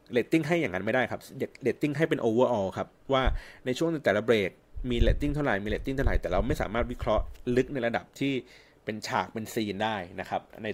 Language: Thai